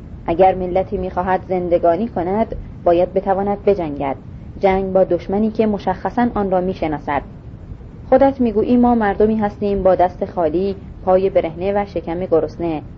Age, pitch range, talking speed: 30-49, 165-200 Hz, 135 wpm